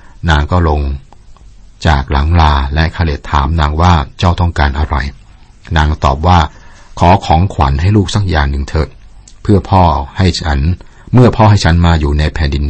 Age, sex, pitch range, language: 60-79, male, 75-95 Hz, Thai